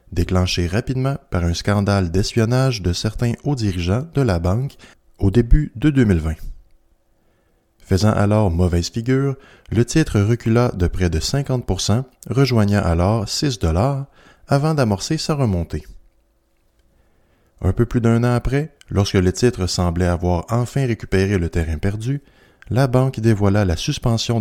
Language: French